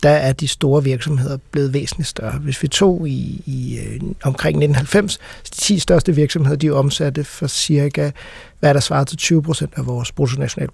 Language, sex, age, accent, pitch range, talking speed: Danish, male, 60-79, native, 140-165 Hz, 180 wpm